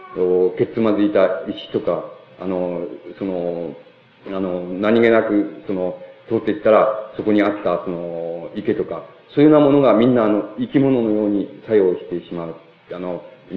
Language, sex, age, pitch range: Japanese, male, 40-59, 100-130 Hz